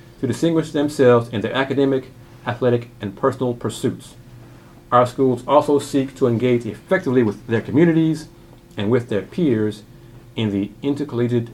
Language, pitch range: English, 115-140 Hz